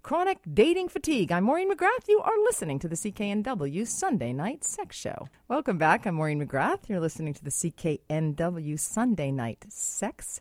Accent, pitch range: American, 145-220 Hz